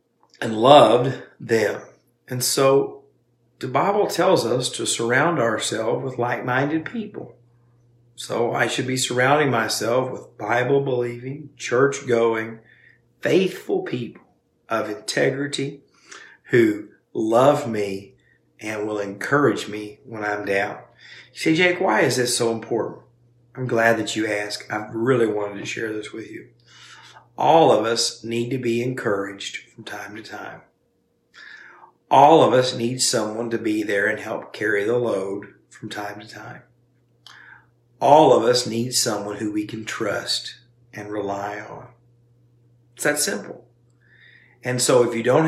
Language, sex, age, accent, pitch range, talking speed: English, male, 50-69, American, 110-125 Hz, 140 wpm